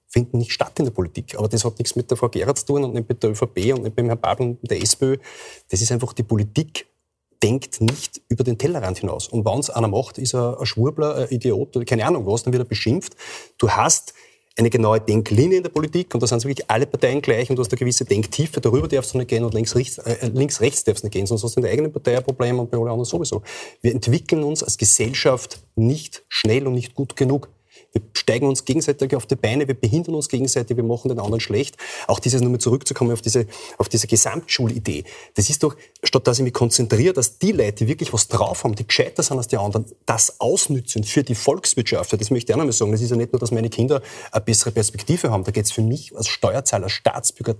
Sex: male